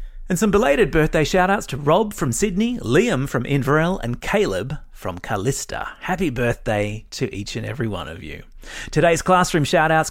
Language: English